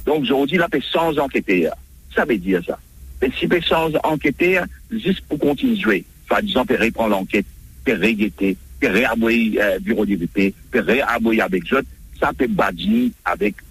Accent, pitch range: French, 105-160 Hz